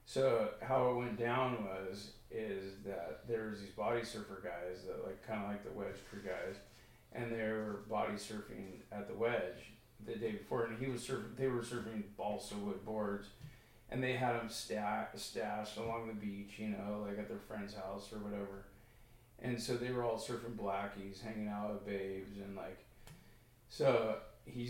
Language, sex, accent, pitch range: English, male, American, 100-120 Hz